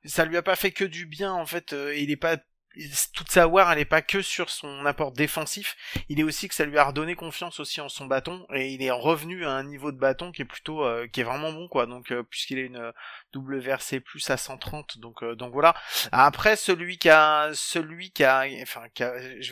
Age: 30-49